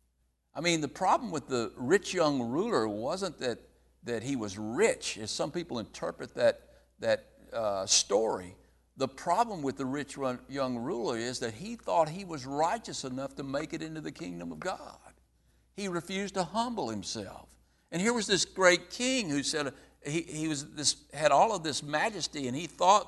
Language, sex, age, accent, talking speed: English, male, 60-79, American, 185 wpm